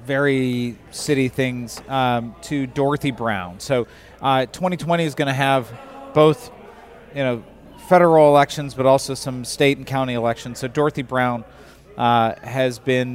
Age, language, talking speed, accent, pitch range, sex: 40-59, English, 145 wpm, American, 120-150 Hz, male